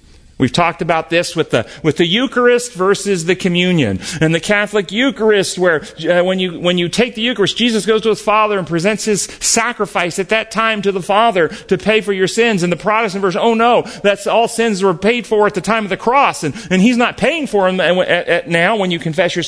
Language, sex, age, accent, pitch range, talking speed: English, male, 40-59, American, 170-230 Hz, 235 wpm